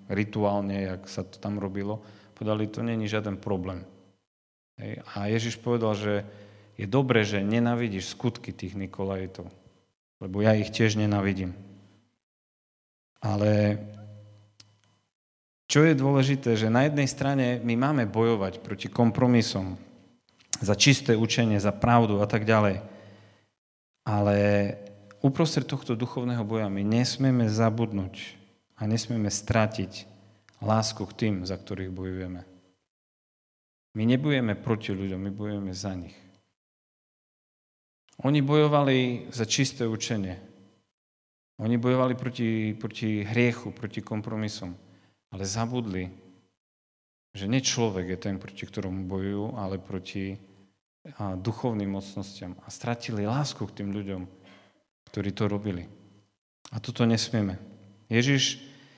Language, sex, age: Slovak, male, 40-59